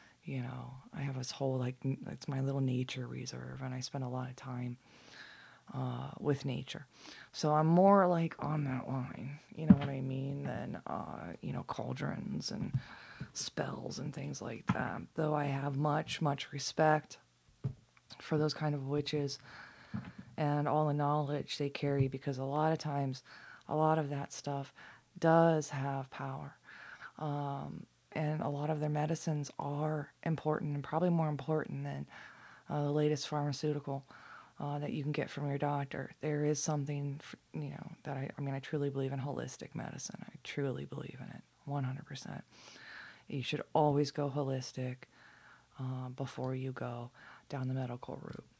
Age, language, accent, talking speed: 20-39, English, American, 165 wpm